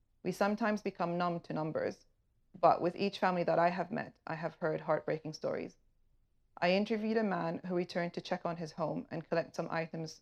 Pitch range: 160-180 Hz